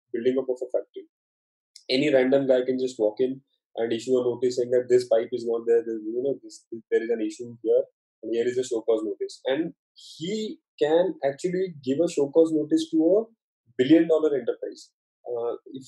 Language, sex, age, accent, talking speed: English, male, 20-39, Indian, 205 wpm